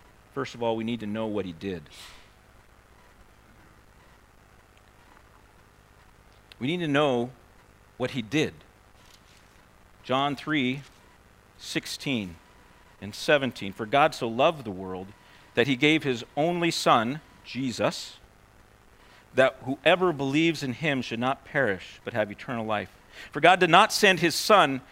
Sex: male